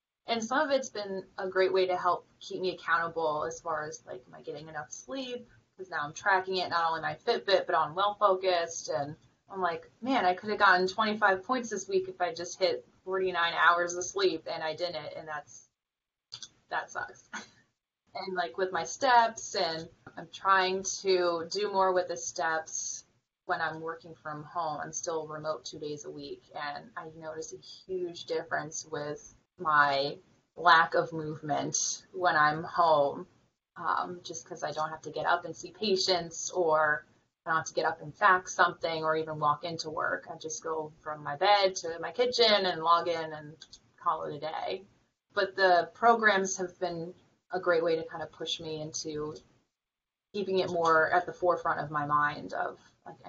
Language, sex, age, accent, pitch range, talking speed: English, female, 20-39, American, 155-185 Hz, 190 wpm